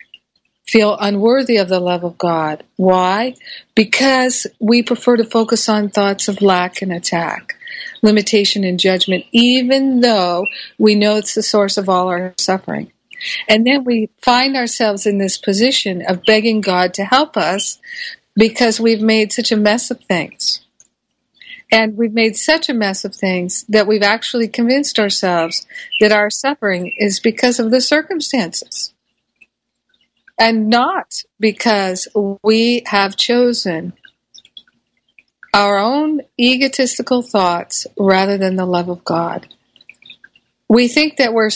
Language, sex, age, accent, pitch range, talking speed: English, female, 50-69, American, 195-240 Hz, 140 wpm